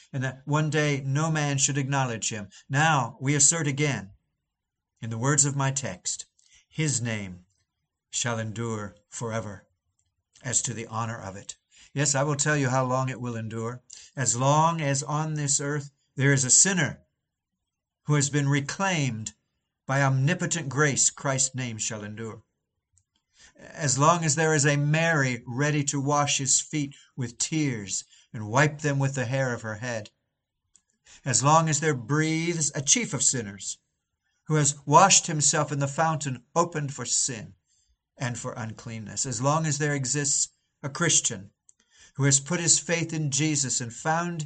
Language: English